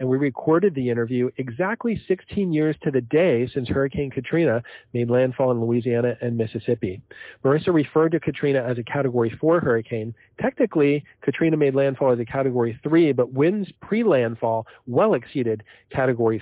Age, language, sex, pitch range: 40-59, English, male, 125-145 Hz